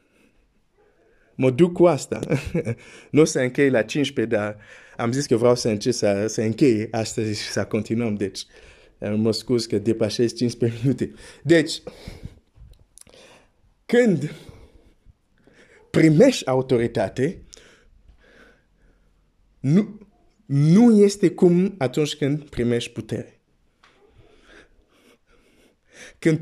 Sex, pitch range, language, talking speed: male, 115-165 Hz, Romanian, 95 wpm